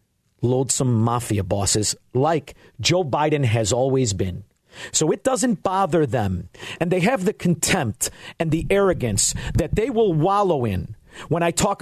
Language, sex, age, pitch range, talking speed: English, male, 50-69, 125-190 Hz, 150 wpm